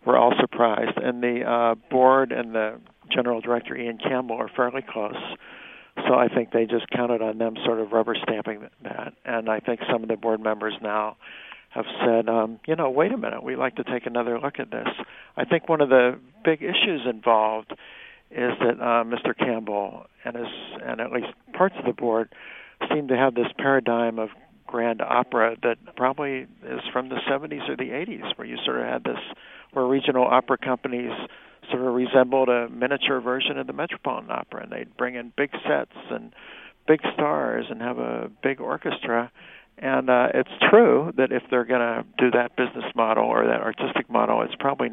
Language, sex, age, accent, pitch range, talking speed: English, male, 60-79, American, 115-130 Hz, 190 wpm